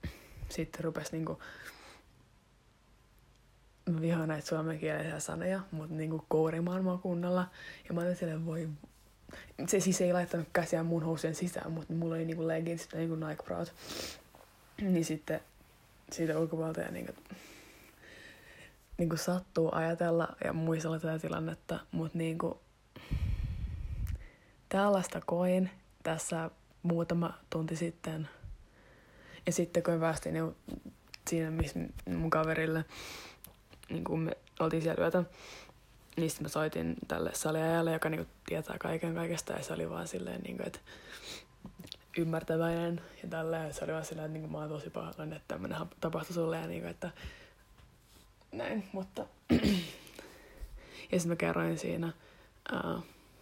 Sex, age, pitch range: female, 20-39, 155-170 Hz